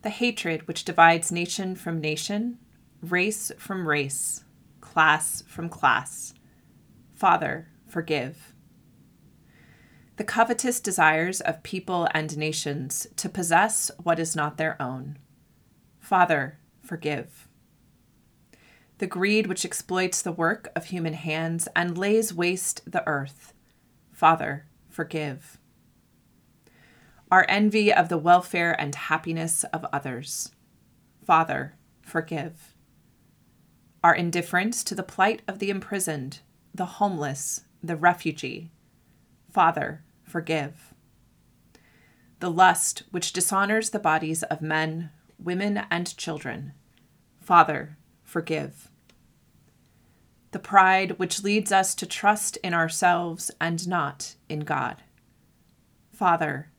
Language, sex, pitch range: English, female, 155-190 Hz